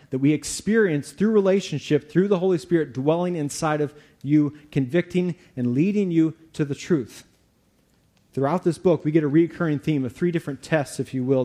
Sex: male